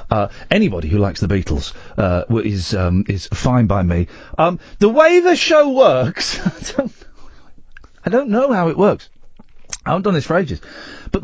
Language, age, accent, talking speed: English, 40-59, British, 170 wpm